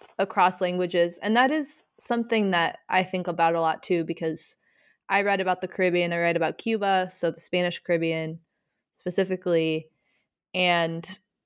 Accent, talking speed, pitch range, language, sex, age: American, 150 wpm, 165-190 Hz, English, female, 20-39